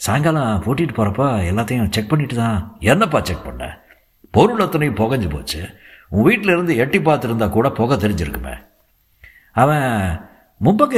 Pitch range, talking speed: 80-115 Hz, 125 wpm